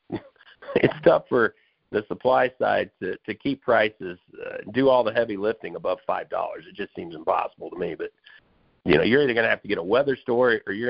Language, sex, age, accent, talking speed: English, male, 50-69, American, 215 wpm